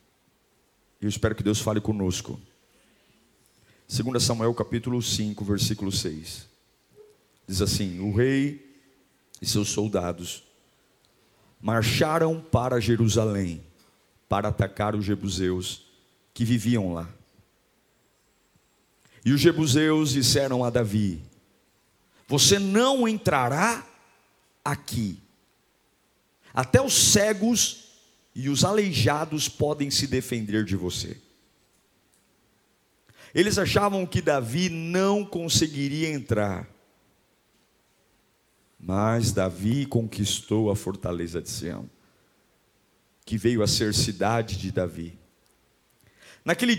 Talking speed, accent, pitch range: 90 wpm, Brazilian, 100-145 Hz